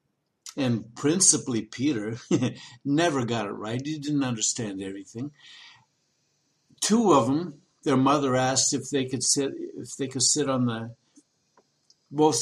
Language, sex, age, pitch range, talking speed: English, male, 60-79, 130-160 Hz, 135 wpm